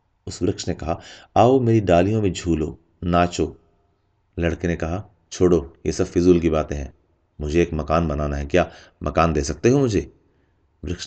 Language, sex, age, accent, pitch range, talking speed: Hindi, male, 30-49, native, 85-110 Hz, 170 wpm